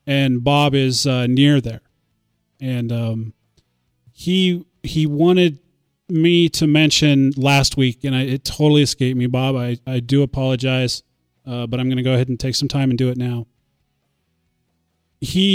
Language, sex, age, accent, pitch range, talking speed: English, male, 30-49, American, 125-150 Hz, 165 wpm